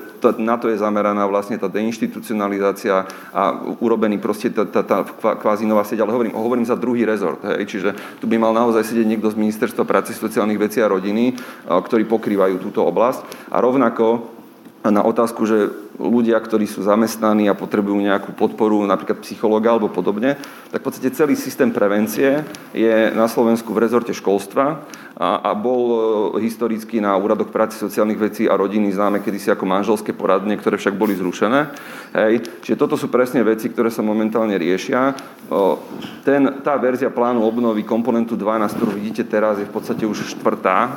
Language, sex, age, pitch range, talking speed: Slovak, male, 40-59, 105-115 Hz, 170 wpm